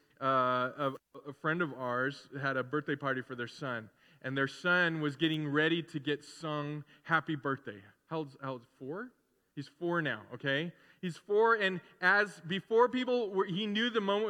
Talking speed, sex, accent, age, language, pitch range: 180 wpm, male, American, 20-39, English, 145-210 Hz